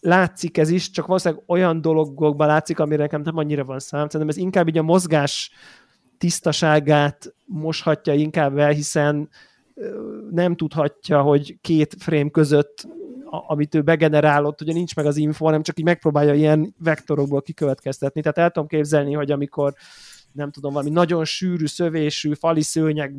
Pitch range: 145-165 Hz